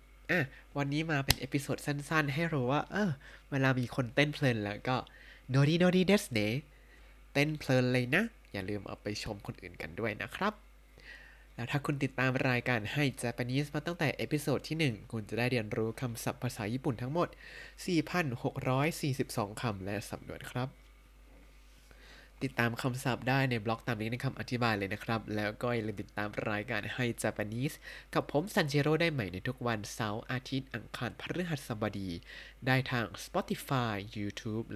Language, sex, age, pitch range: Thai, male, 20-39, 110-140 Hz